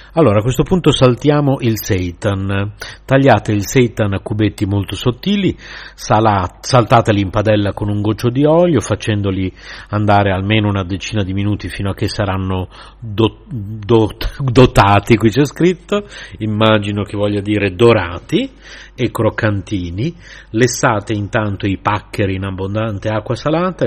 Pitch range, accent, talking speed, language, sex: 100-120 Hz, native, 130 wpm, Italian, male